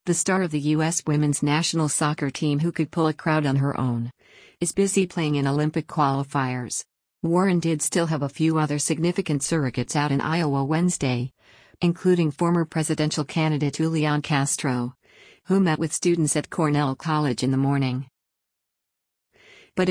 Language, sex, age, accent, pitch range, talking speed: English, female, 50-69, American, 145-165 Hz, 160 wpm